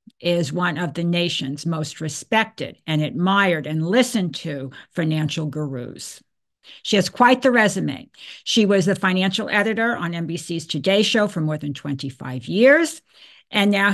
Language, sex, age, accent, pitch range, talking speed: English, female, 50-69, American, 165-210 Hz, 150 wpm